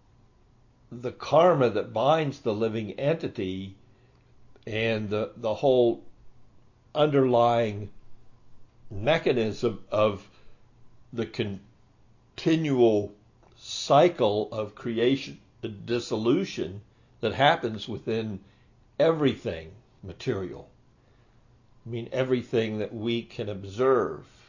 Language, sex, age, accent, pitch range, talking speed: English, male, 60-79, American, 105-125 Hz, 80 wpm